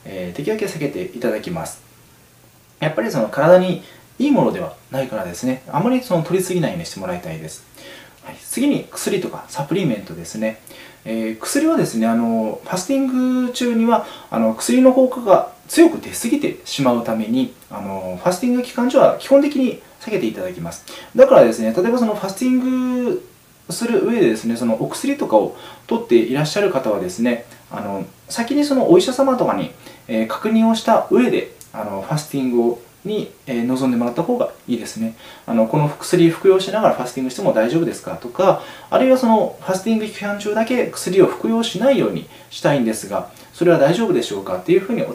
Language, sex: Japanese, male